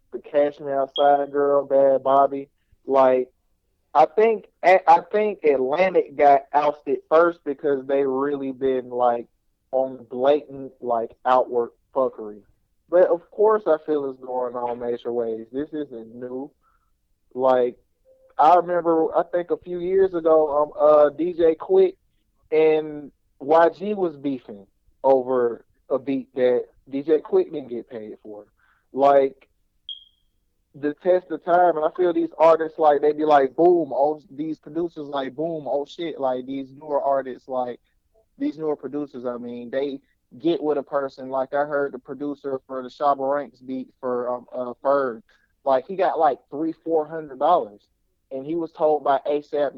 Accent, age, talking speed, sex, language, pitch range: American, 30-49, 155 wpm, male, English, 130-165 Hz